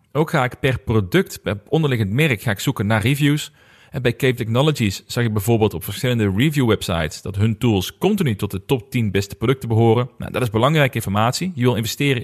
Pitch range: 100-140 Hz